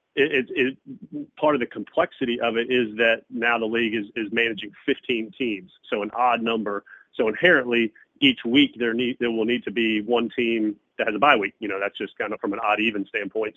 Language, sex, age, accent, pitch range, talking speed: English, male, 40-59, American, 110-125 Hz, 230 wpm